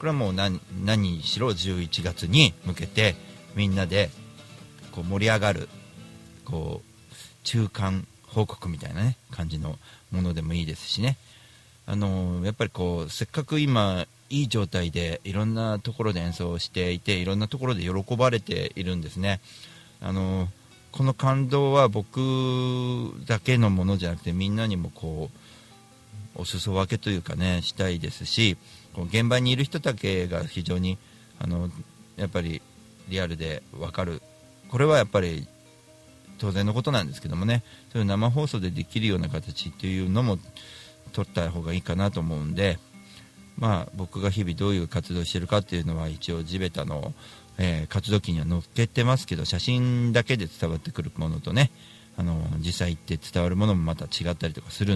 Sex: male